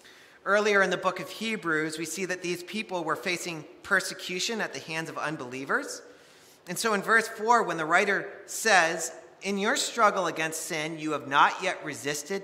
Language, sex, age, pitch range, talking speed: English, male, 40-59, 150-220 Hz, 185 wpm